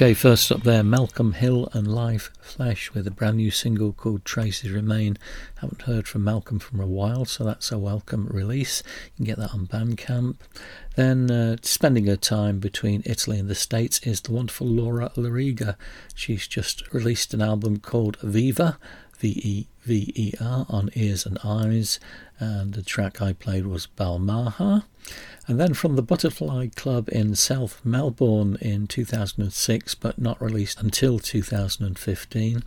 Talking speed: 155 wpm